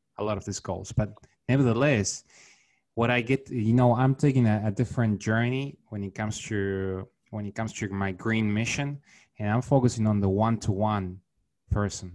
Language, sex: English, male